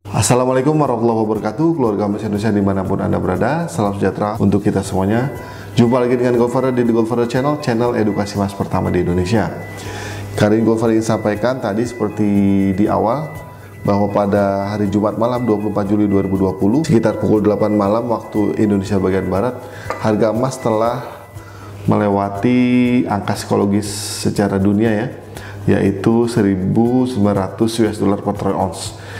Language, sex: Indonesian, male